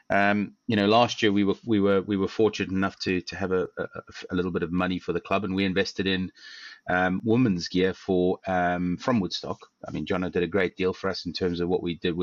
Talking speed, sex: 260 wpm, male